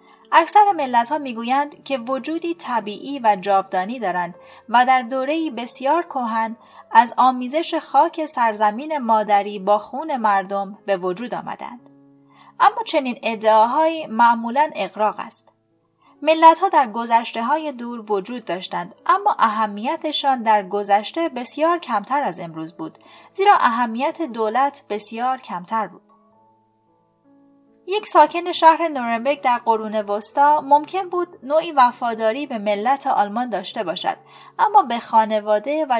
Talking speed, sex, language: 120 wpm, female, Persian